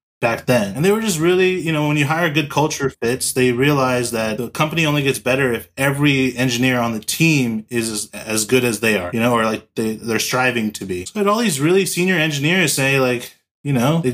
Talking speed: 240 wpm